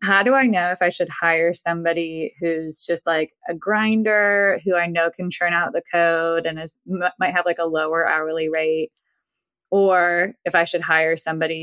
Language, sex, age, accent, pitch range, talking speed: English, female, 20-39, American, 165-185 Hz, 195 wpm